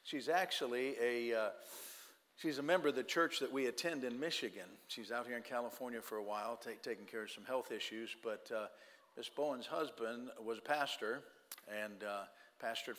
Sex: male